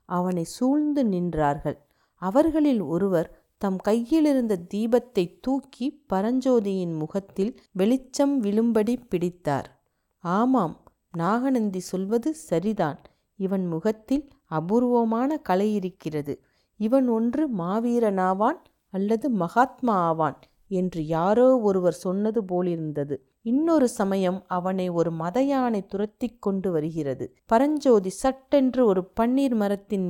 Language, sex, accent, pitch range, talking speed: Tamil, female, native, 175-235 Hz, 95 wpm